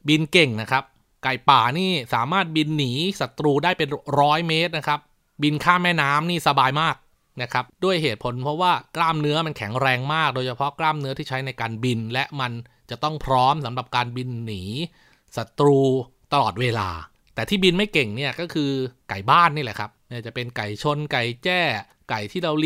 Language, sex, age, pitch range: Thai, male, 20-39, 120-155 Hz